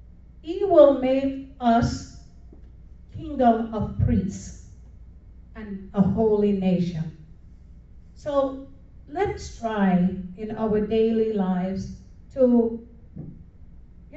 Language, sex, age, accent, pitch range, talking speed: English, female, 50-69, American, 180-230 Hz, 85 wpm